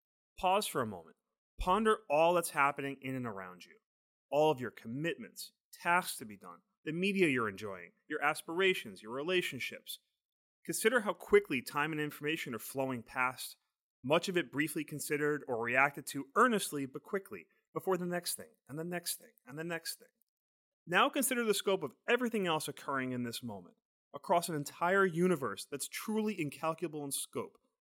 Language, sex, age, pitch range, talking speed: English, male, 30-49, 145-210 Hz, 175 wpm